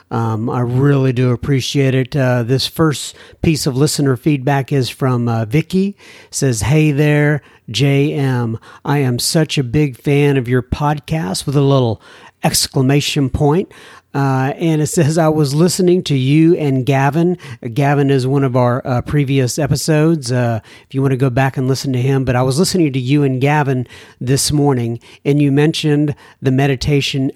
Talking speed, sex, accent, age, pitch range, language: 180 wpm, male, American, 50-69, 125-150 Hz, English